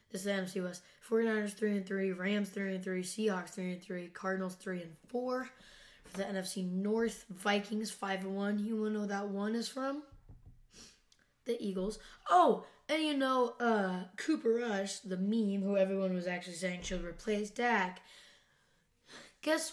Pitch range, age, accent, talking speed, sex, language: 185-215 Hz, 10-29, American, 140 wpm, female, English